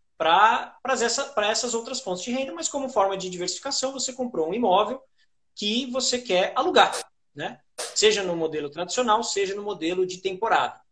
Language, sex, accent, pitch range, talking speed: Portuguese, male, Brazilian, 180-260 Hz, 165 wpm